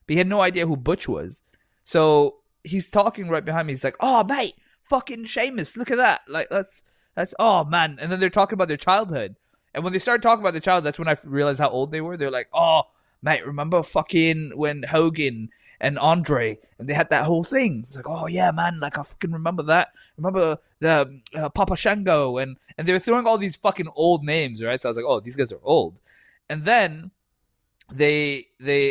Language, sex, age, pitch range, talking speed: English, male, 20-39, 140-190 Hz, 220 wpm